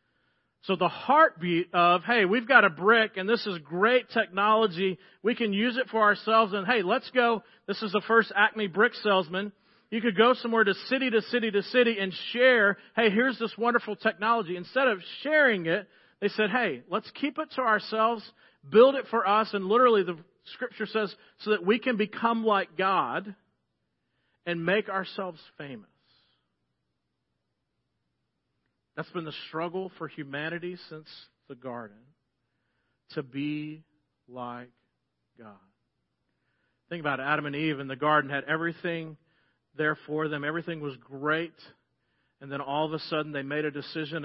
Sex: male